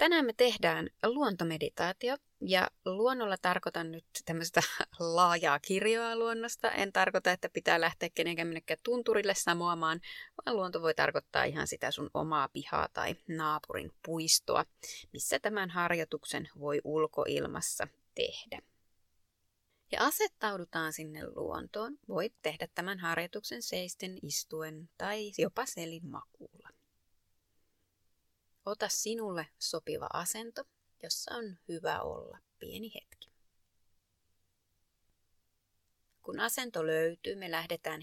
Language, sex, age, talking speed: Finnish, female, 20-39, 105 wpm